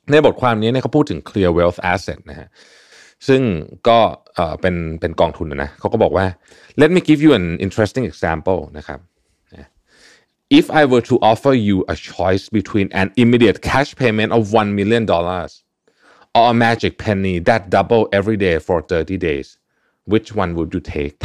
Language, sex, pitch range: Thai, male, 90-120 Hz